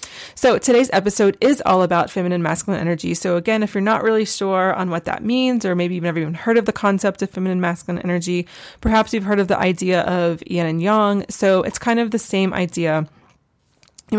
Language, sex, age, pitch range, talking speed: English, female, 20-39, 175-210 Hz, 215 wpm